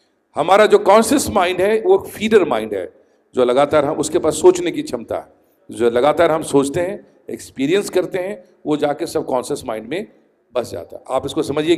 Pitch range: 145-220 Hz